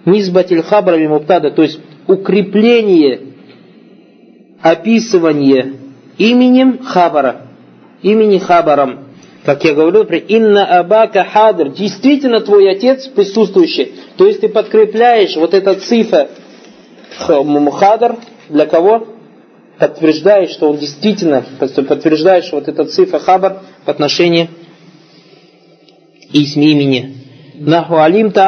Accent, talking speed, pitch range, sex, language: native, 90 wpm, 160-205 Hz, male, Russian